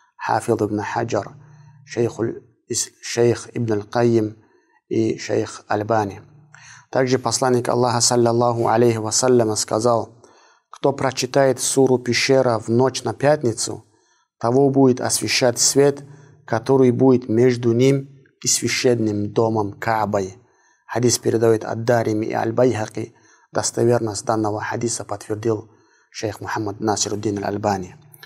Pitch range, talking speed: 115-135 Hz, 100 wpm